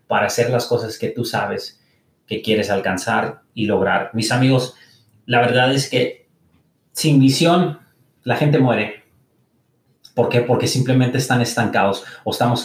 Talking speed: 145 wpm